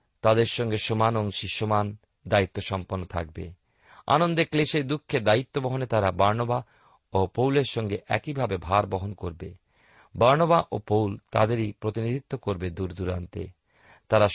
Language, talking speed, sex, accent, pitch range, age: Bengali, 130 wpm, male, native, 95-130 Hz, 50-69